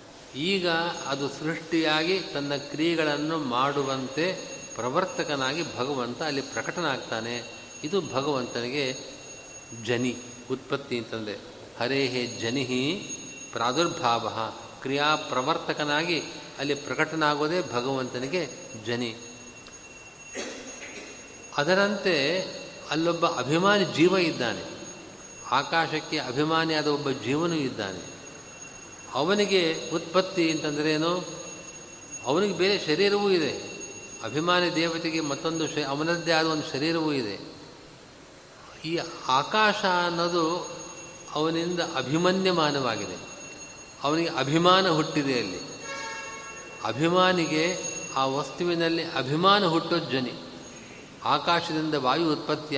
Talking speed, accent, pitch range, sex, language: 75 wpm, native, 135-170 Hz, male, Kannada